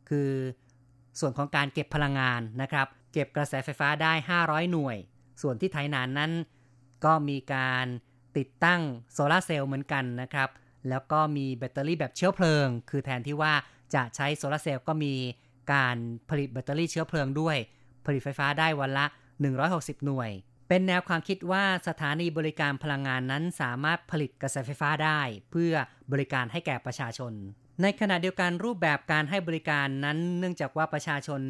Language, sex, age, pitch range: Thai, female, 30-49, 135-160 Hz